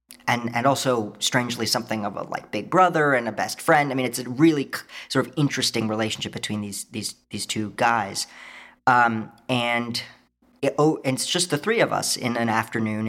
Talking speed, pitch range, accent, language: 200 wpm, 110-125 Hz, American, English